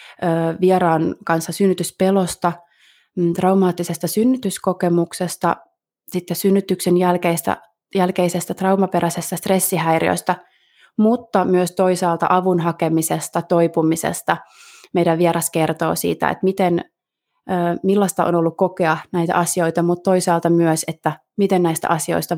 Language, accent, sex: Finnish, native, female